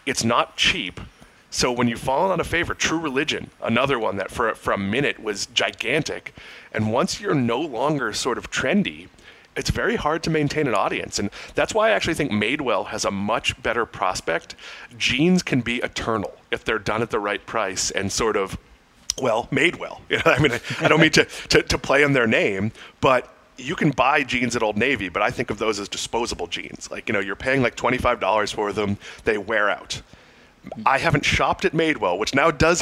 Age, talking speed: 30-49, 210 wpm